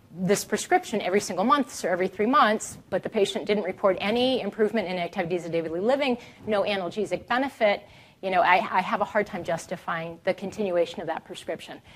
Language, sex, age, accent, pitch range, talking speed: English, female, 30-49, American, 185-230 Hz, 195 wpm